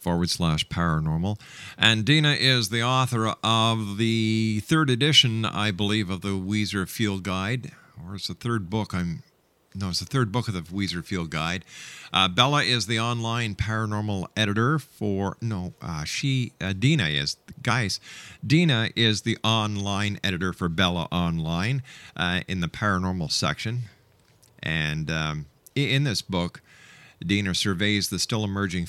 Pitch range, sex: 95-120 Hz, male